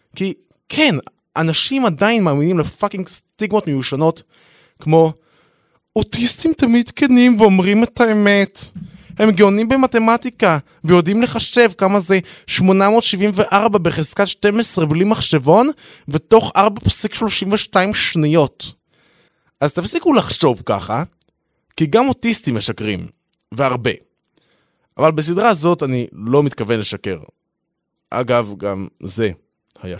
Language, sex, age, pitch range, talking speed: Hebrew, male, 20-39, 115-195 Hz, 105 wpm